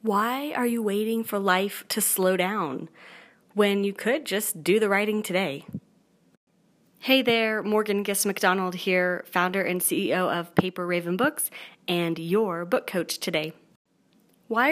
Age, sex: 30-49, female